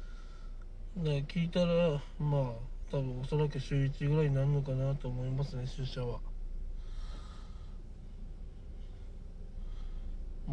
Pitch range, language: 95-145 Hz, Japanese